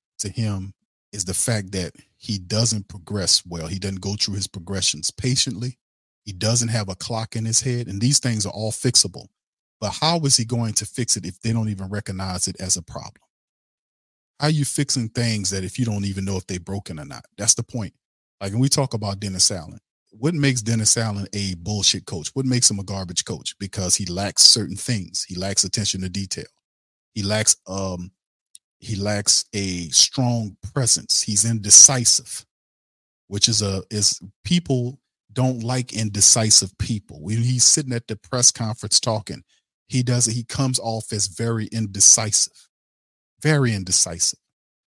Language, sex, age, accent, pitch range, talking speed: English, male, 40-59, American, 95-120 Hz, 180 wpm